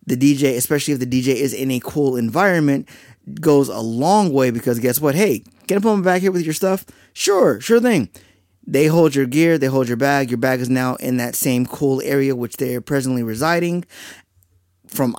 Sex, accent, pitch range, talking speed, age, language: male, American, 125-155 Hz, 215 wpm, 20-39, English